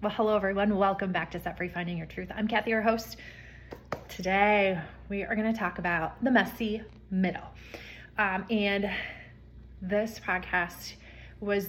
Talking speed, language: 155 wpm, English